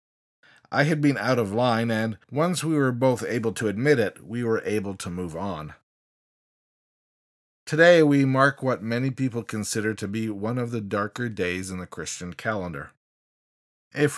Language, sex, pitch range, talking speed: English, male, 110-145 Hz, 170 wpm